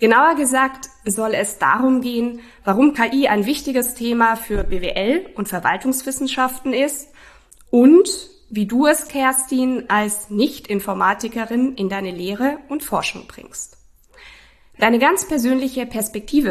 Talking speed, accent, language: 120 wpm, German, German